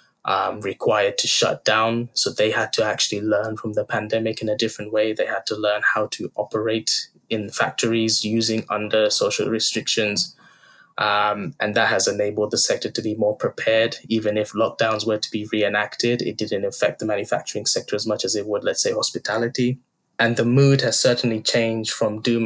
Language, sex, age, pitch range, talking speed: English, male, 20-39, 110-125 Hz, 190 wpm